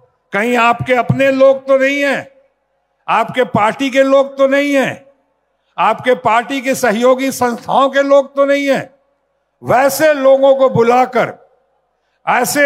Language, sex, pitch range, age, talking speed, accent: Hindi, male, 245-275 Hz, 60-79, 135 wpm, native